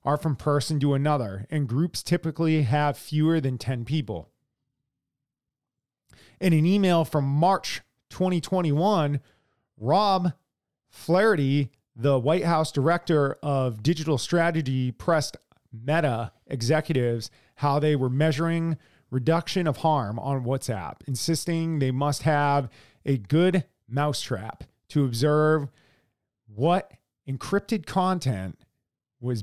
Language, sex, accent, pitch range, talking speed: English, male, American, 130-165 Hz, 110 wpm